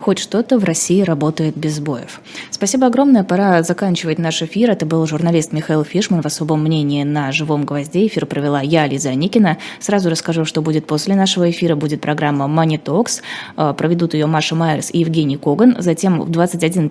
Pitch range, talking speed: 155-175 Hz, 180 wpm